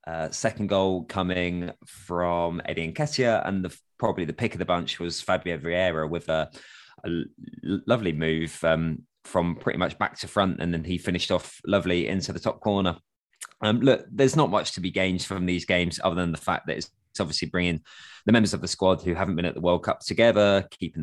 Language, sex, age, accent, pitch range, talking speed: English, male, 20-39, British, 90-115 Hz, 205 wpm